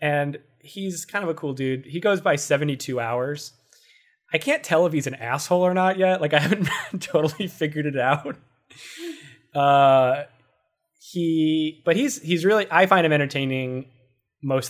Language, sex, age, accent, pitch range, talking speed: English, male, 20-39, American, 130-165 Hz, 165 wpm